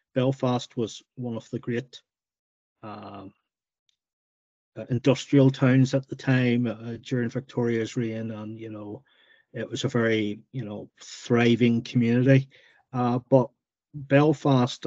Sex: male